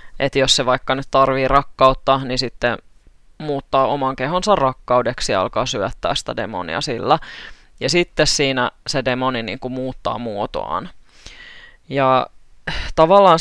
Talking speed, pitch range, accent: 130 wpm, 130-150 Hz, native